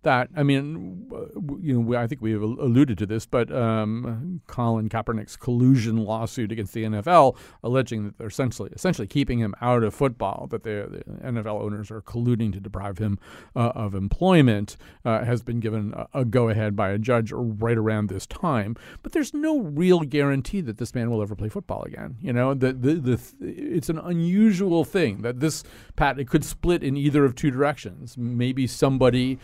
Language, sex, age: English, male, 40-59